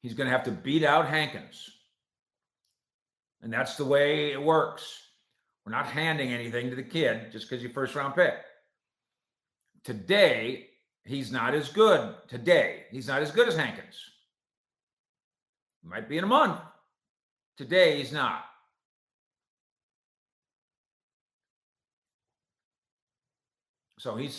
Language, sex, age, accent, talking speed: English, male, 50-69, American, 125 wpm